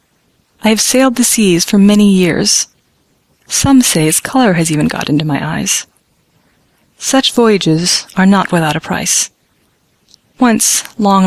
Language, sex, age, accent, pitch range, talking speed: English, female, 30-49, American, 175-220 Hz, 145 wpm